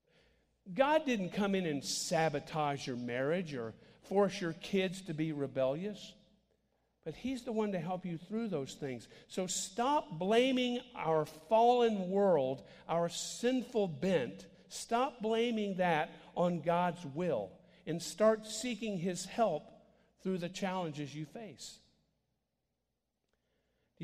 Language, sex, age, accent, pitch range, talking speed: English, male, 50-69, American, 155-215 Hz, 125 wpm